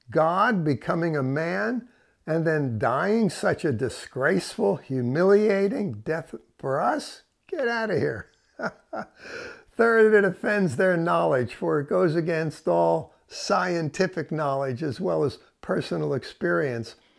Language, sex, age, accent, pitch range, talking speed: English, male, 60-79, American, 140-195 Hz, 120 wpm